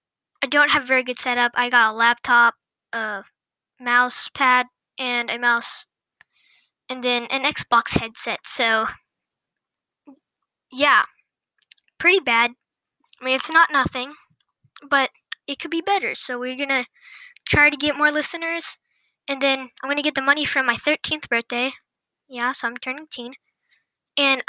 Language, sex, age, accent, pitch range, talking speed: English, female, 10-29, American, 245-290 Hz, 145 wpm